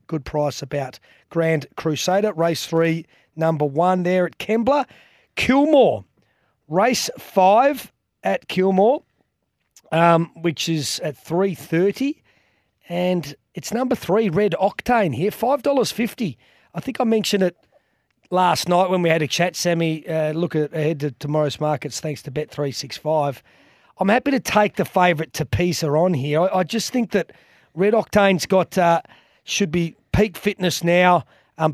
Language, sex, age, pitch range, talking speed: English, male, 30-49, 150-185 Hz, 145 wpm